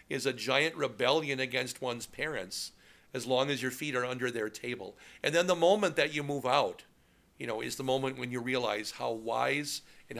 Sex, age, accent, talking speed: male, 50-69, American, 205 wpm